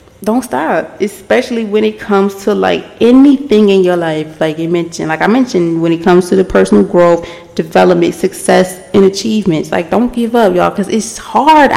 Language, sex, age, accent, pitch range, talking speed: English, female, 20-39, American, 180-230 Hz, 190 wpm